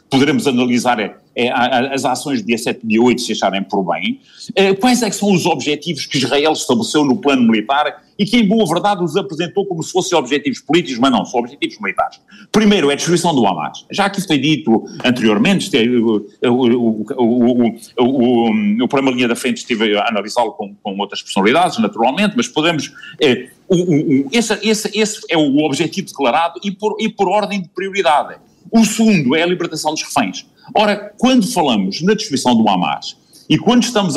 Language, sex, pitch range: Portuguese, male, 140-210 Hz